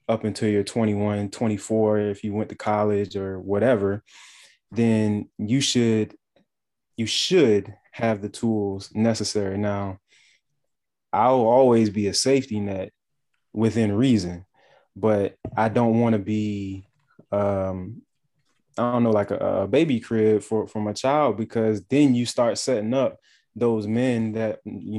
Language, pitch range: English, 105-120 Hz